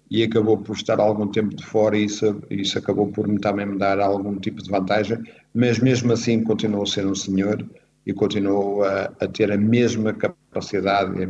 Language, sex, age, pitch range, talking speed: Portuguese, male, 50-69, 100-115 Hz, 200 wpm